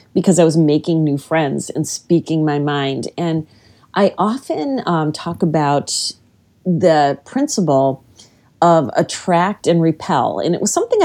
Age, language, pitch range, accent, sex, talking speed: 40-59, English, 155-220 Hz, American, female, 140 wpm